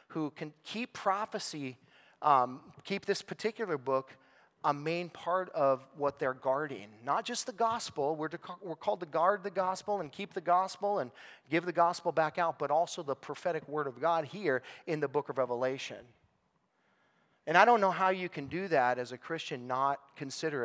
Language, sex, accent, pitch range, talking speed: English, male, American, 140-170 Hz, 185 wpm